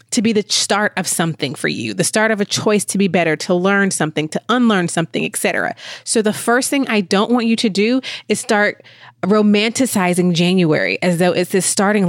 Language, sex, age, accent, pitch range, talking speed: English, female, 20-39, American, 170-215 Hz, 210 wpm